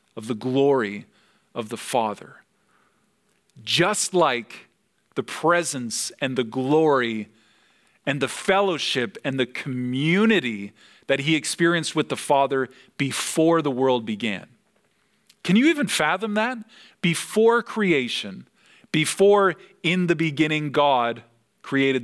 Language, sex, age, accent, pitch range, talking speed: English, male, 40-59, American, 125-185 Hz, 115 wpm